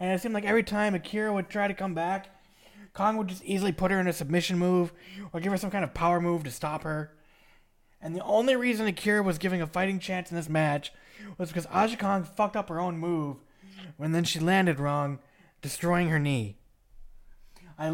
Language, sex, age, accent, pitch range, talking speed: English, male, 20-39, American, 155-205 Hz, 215 wpm